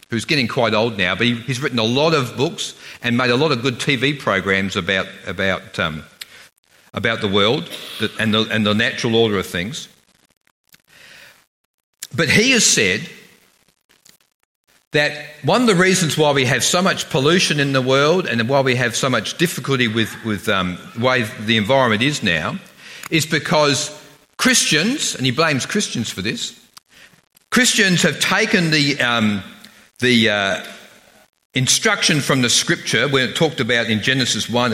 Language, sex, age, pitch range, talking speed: English, male, 50-69, 125-175 Hz, 165 wpm